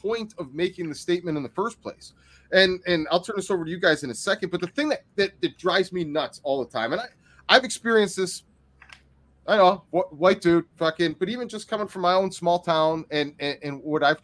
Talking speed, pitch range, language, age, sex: 250 wpm, 170-240 Hz, English, 30-49, male